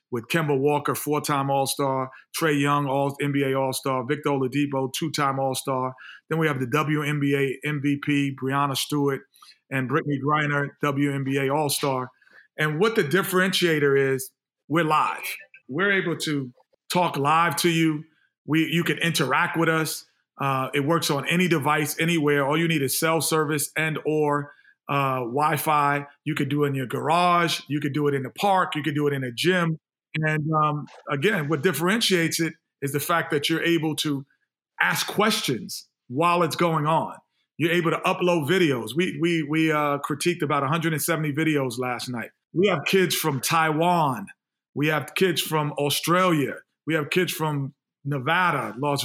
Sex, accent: male, American